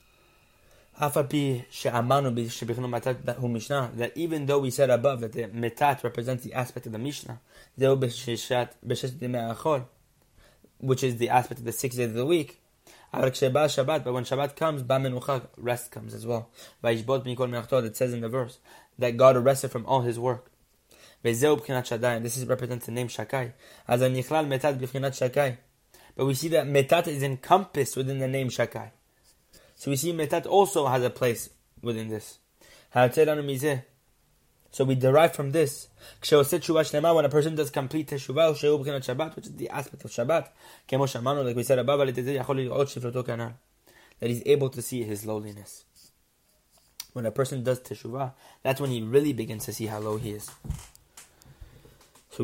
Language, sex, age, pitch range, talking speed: English, male, 20-39, 120-140 Hz, 130 wpm